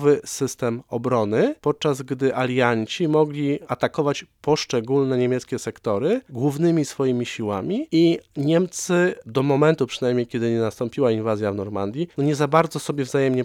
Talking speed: 135 wpm